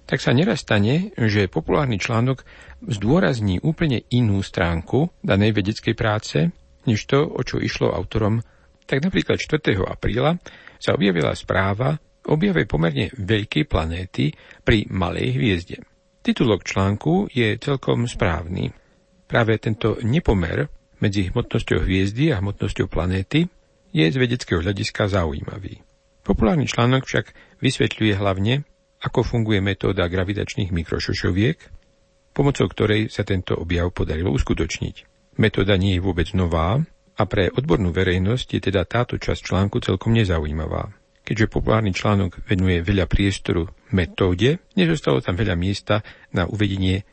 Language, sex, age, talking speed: Slovak, male, 60-79, 125 wpm